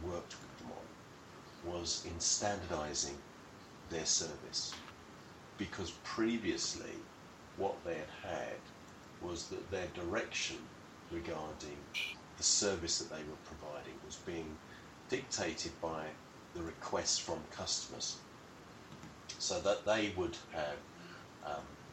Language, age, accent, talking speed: English, 40-59, British, 110 wpm